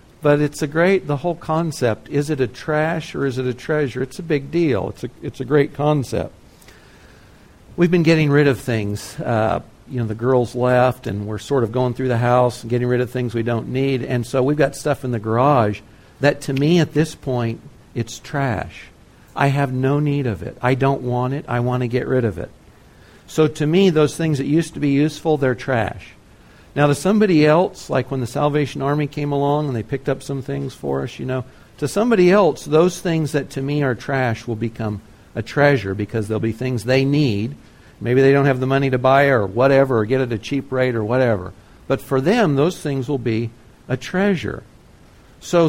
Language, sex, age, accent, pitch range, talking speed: English, male, 60-79, American, 120-150 Hz, 220 wpm